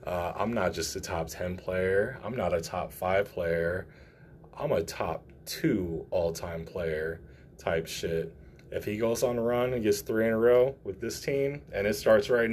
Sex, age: male, 20-39